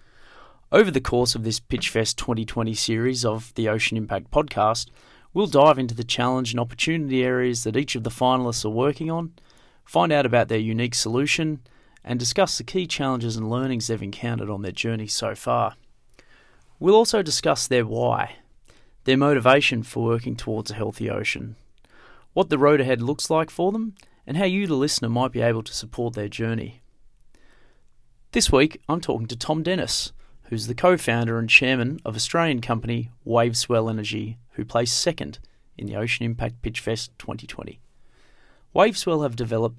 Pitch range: 115-140 Hz